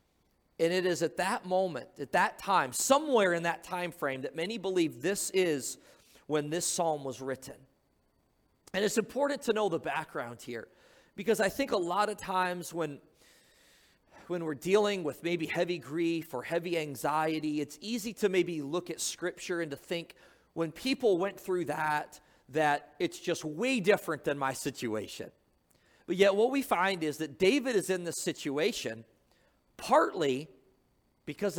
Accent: American